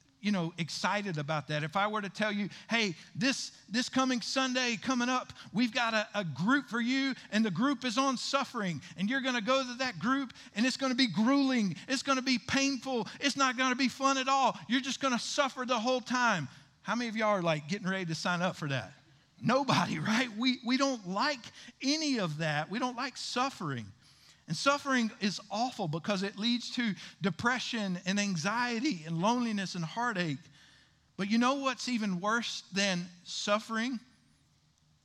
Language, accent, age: English, American, 50-69